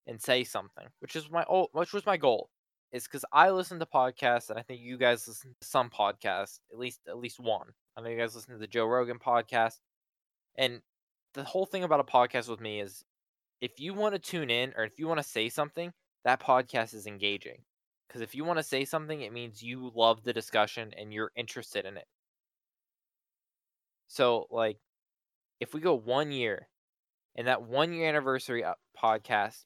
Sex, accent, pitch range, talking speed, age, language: male, American, 110-130 Hz, 200 wpm, 10-29, English